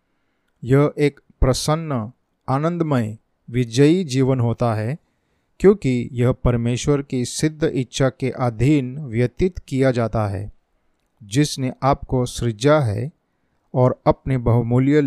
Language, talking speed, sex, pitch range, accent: Hindi, 110 wpm, male, 120-140 Hz, native